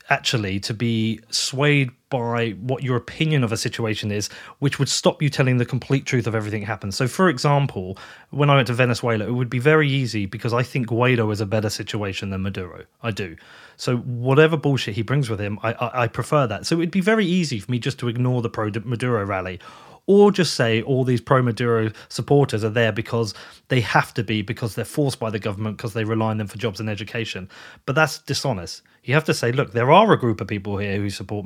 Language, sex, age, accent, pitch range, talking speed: English, male, 30-49, British, 110-140 Hz, 230 wpm